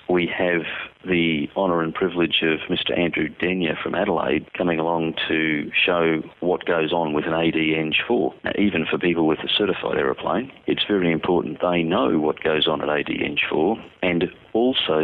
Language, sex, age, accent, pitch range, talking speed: English, male, 40-59, Australian, 80-90 Hz, 170 wpm